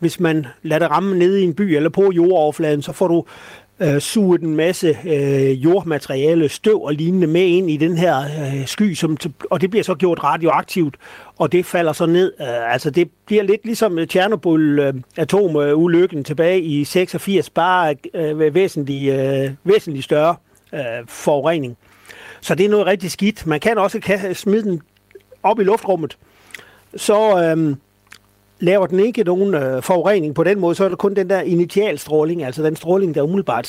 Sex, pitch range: male, 145-180 Hz